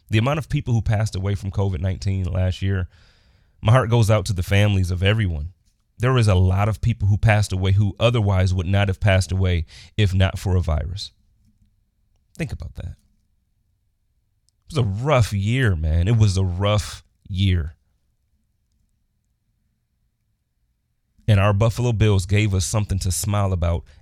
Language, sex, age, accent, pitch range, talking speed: English, male, 30-49, American, 95-110 Hz, 160 wpm